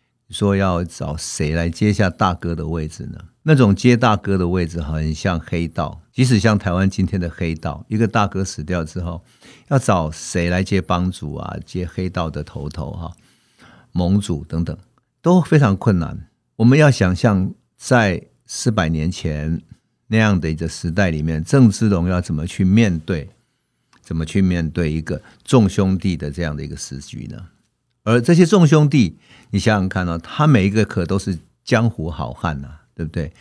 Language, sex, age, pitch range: Chinese, male, 50-69, 85-120 Hz